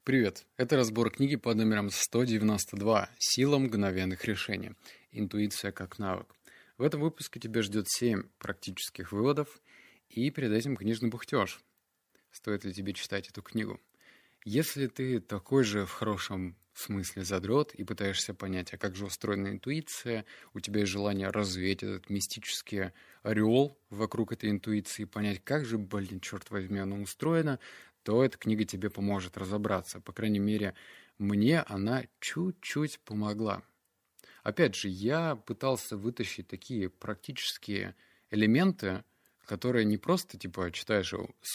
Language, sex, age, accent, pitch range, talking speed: Russian, male, 20-39, native, 100-120 Hz, 135 wpm